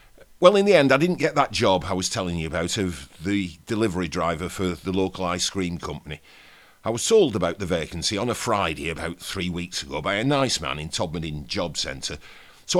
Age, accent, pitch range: 50-69, British, 95-145 Hz